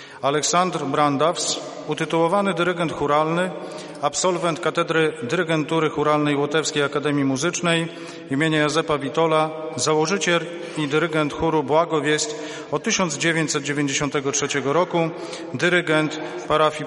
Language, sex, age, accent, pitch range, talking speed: Polish, male, 40-59, native, 145-165 Hz, 95 wpm